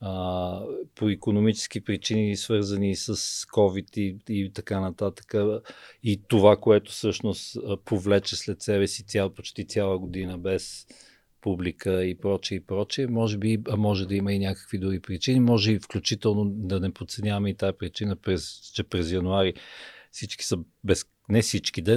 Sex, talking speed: male, 155 wpm